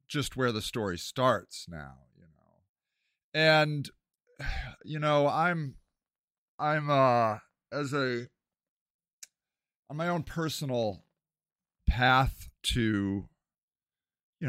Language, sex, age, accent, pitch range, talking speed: English, male, 40-59, American, 120-155 Hz, 95 wpm